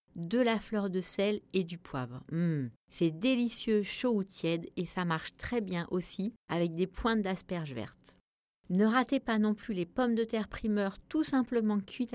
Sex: female